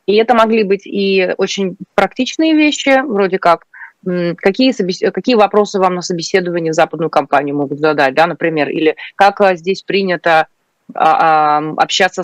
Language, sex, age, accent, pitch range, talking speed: Russian, female, 30-49, native, 165-205 Hz, 135 wpm